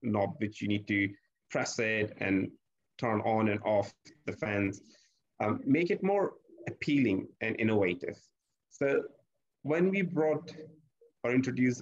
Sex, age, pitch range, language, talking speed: male, 30-49, 100-125 Hz, English, 135 wpm